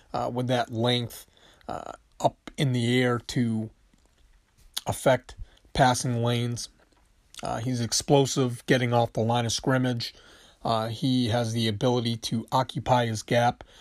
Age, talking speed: 30-49, 135 wpm